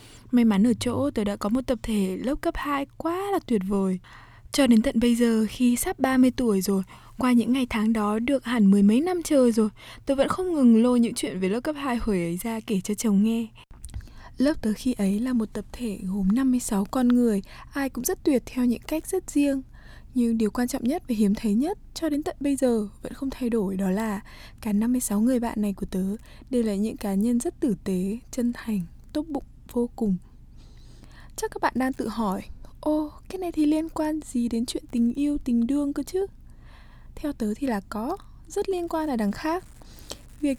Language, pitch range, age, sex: Vietnamese, 215-285 Hz, 20-39, female